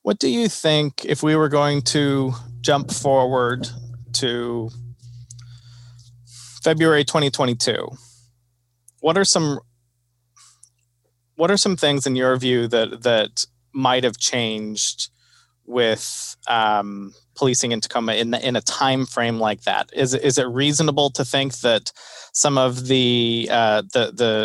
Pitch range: 120-140 Hz